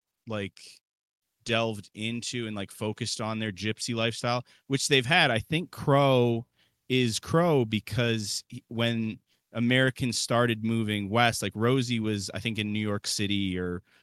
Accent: American